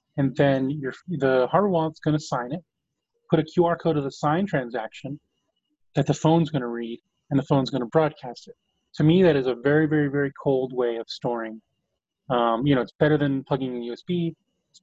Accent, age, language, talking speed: American, 30-49, English, 210 wpm